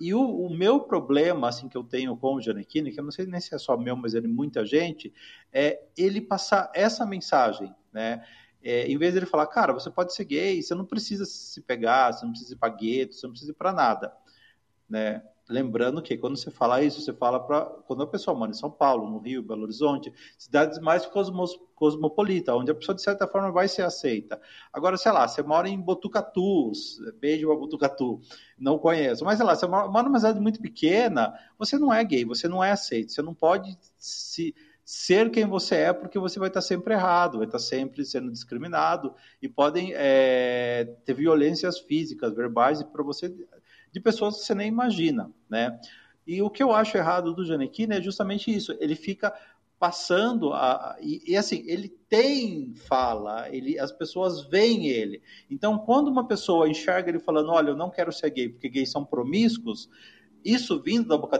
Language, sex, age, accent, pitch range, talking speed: Portuguese, male, 40-59, Brazilian, 135-205 Hz, 200 wpm